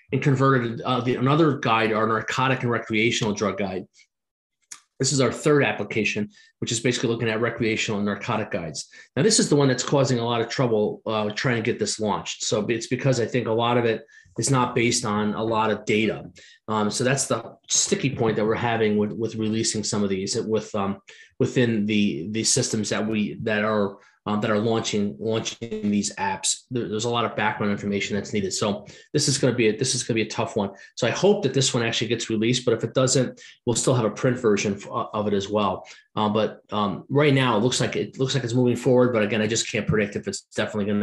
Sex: male